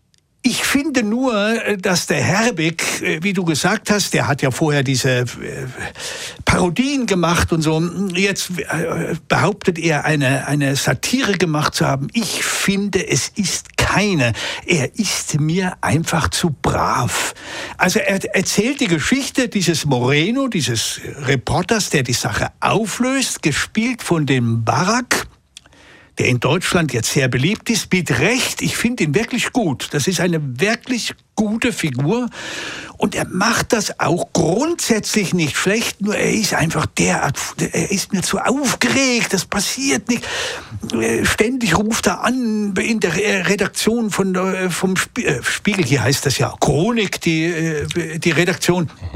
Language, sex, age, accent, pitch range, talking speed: German, male, 60-79, German, 155-220 Hz, 140 wpm